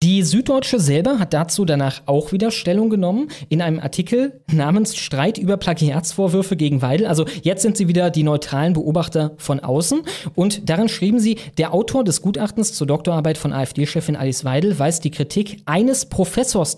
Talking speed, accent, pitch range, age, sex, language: 170 wpm, German, 145-190 Hz, 20-39, male, German